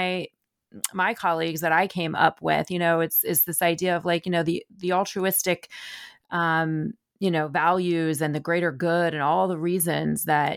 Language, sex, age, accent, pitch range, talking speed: English, female, 30-49, American, 150-175 Hz, 185 wpm